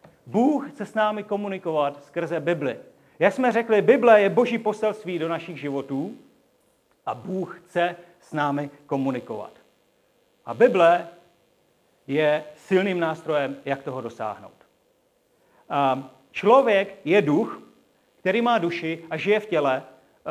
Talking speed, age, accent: 120 wpm, 40-59, native